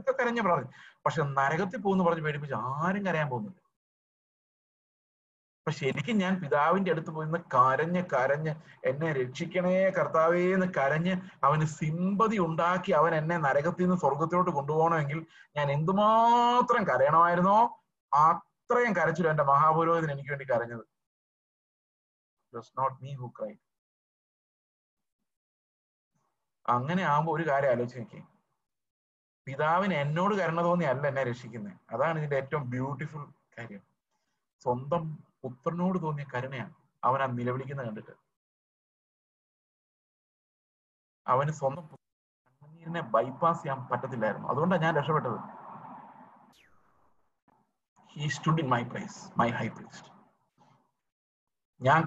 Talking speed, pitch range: 85 wpm, 130-170 Hz